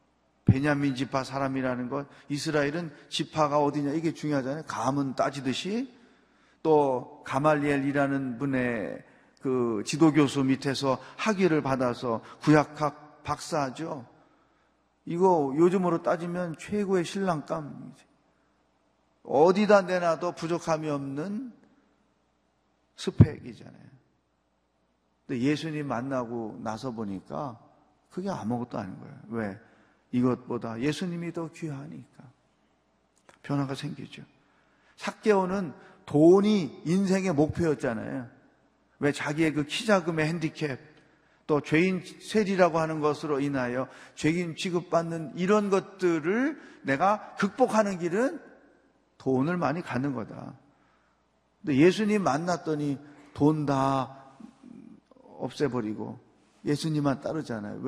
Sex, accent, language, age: male, native, Korean, 40-59